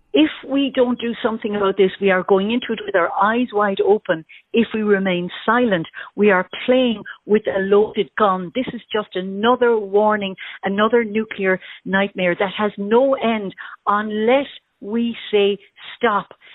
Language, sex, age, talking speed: English, female, 60-79, 160 wpm